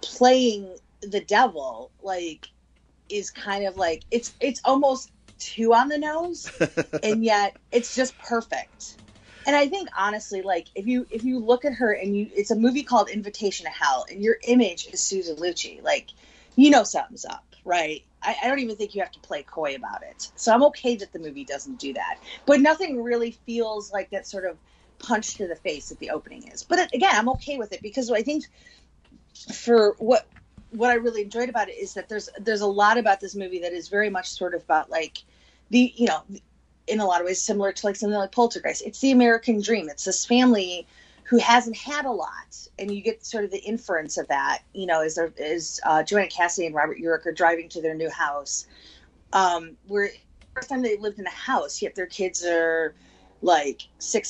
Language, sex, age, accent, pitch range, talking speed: English, female, 30-49, American, 180-240 Hz, 210 wpm